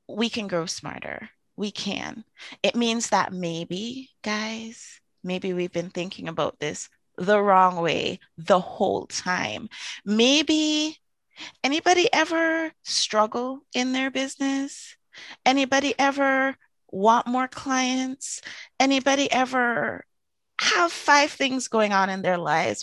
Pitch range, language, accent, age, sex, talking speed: 185-265 Hz, English, American, 30-49, female, 120 wpm